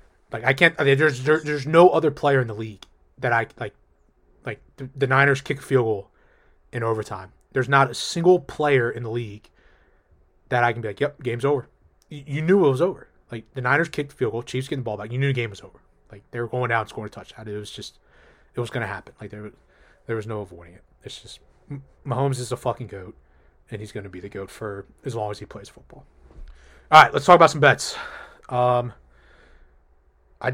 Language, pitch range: English, 105-135 Hz